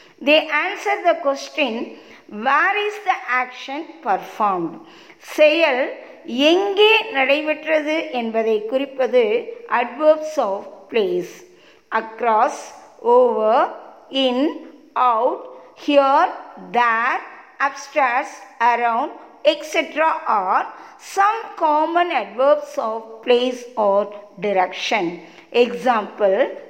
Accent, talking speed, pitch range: native, 80 wpm, 240-345 Hz